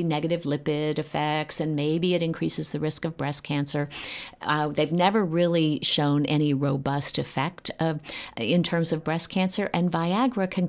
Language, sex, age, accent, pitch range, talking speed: English, female, 50-69, American, 145-185 Hz, 165 wpm